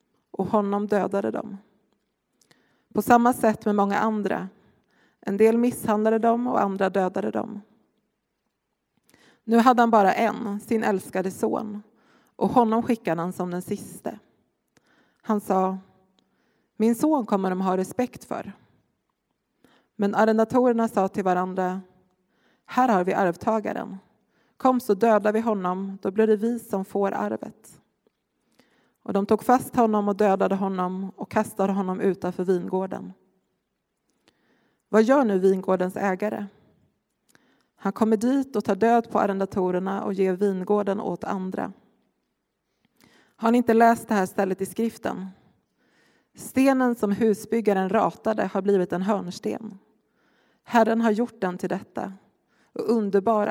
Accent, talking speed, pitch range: native, 135 wpm, 190-225 Hz